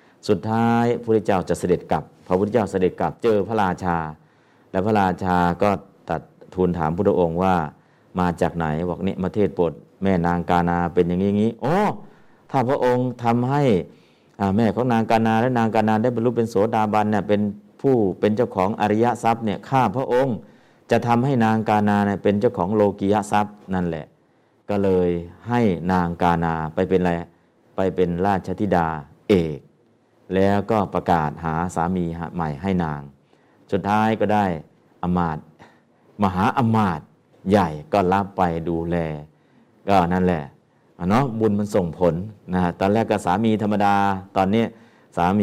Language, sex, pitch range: Thai, male, 85-110 Hz